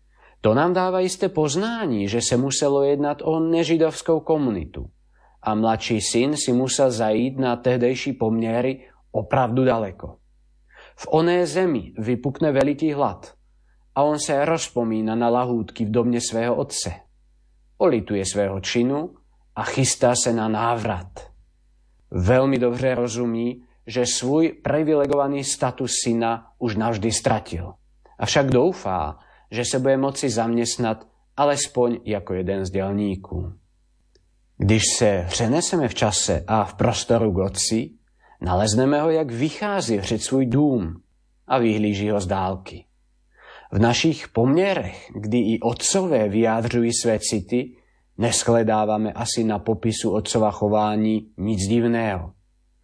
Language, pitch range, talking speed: Slovak, 105-135 Hz, 125 wpm